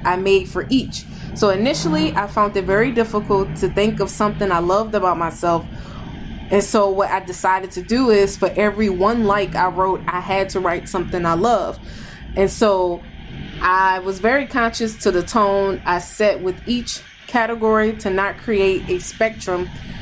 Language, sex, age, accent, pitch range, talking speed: English, female, 20-39, American, 175-205 Hz, 175 wpm